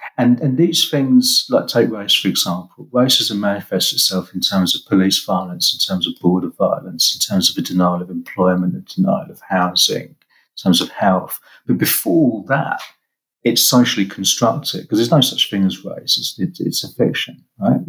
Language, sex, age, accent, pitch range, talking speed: English, male, 50-69, British, 95-135 Hz, 190 wpm